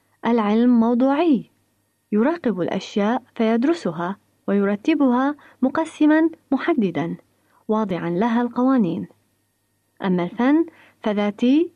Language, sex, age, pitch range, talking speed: Arabic, female, 30-49, 205-285 Hz, 70 wpm